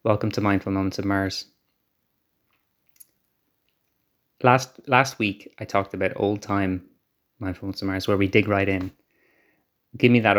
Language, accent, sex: English, Irish, male